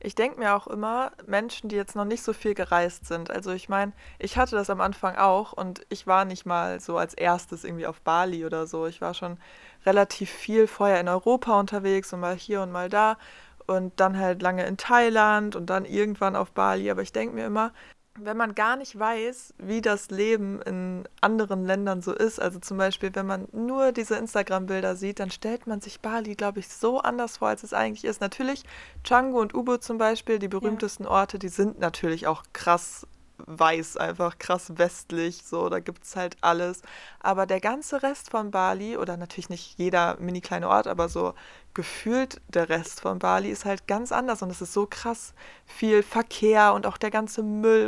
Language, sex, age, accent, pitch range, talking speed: German, female, 20-39, German, 180-220 Hz, 205 wpm